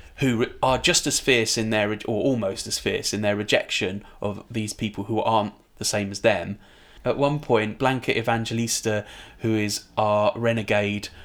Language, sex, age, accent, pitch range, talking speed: English, male, 20-39, British, 105-125 Hz, 170 wpm